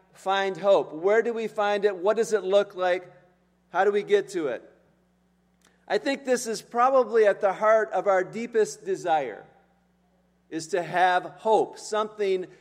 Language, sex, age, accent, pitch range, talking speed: English, male, 40-59, American, 190-225 Hz, 165 wpm